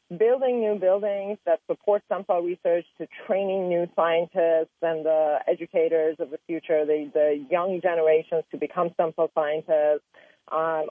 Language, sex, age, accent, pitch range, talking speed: English, female, 30-49, American, 155-185 Hz, 155 wpm